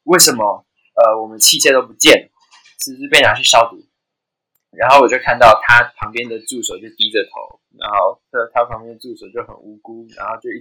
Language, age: Chinese, 20-39